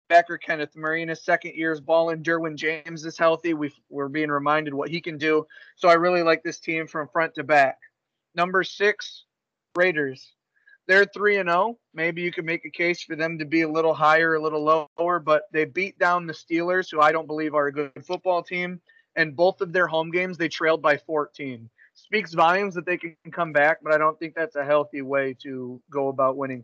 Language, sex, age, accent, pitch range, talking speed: English, male, 30-49, American, 150-175 Hz, 220 wpm